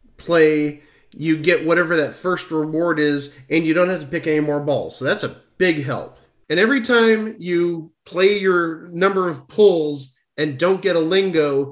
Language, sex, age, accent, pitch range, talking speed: English, male, 40-59, American, 150-185 Hz, 185 wpm